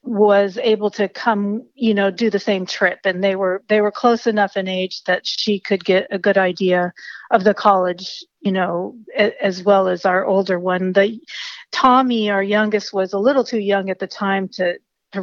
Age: 50-69